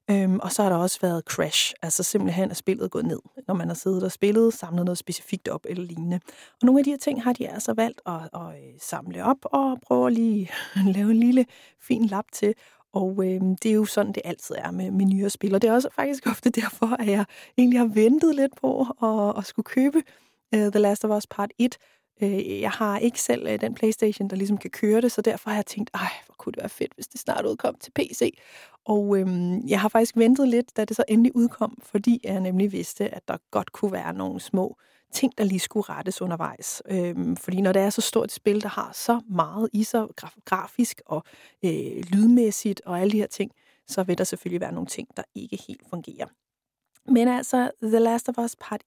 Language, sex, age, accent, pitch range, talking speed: Danish, female, 30-49, native, 190-235 Hz, 225 wpm